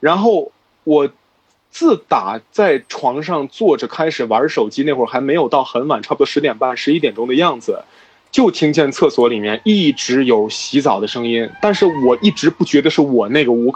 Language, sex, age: Chinese, male, 20-39